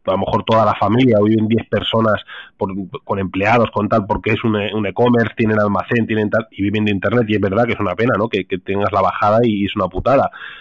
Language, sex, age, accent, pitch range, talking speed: Spanish, male, 30-49, Spanish, 110-145 Hz, 260 wpm